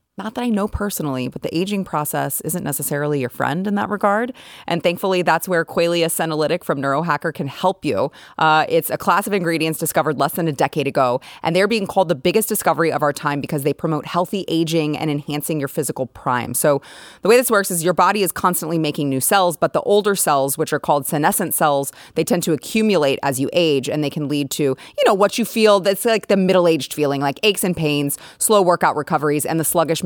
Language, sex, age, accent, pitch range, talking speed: English, female, 30-49, American, 150-185 Hz, 225 wpm